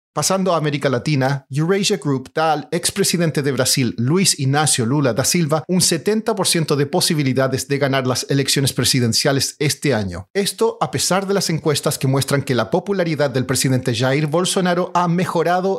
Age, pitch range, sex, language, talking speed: 40-59, 135-180 Hz, male, Spanish, 165 wpm